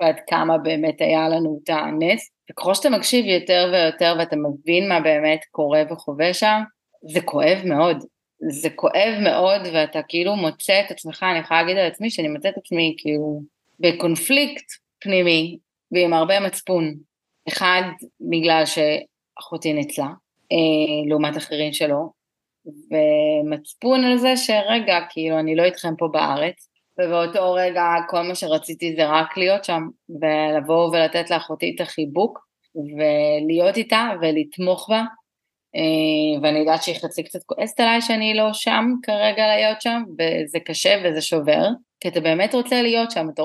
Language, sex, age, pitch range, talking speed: Hebrew, female, 30-49, 155-195 Hz, 145 wpm